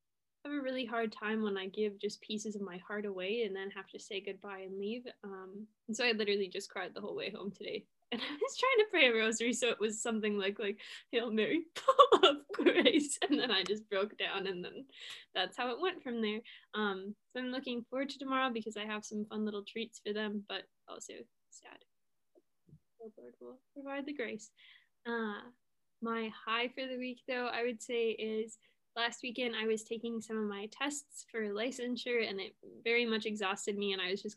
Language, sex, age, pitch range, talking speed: English, female, 10-29, 210-250 Hz, 215 wpm